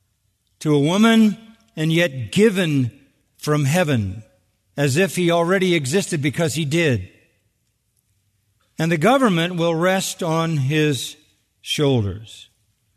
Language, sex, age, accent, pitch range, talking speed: English, male, 50-69, American, 125-160 Hz, 110 wpm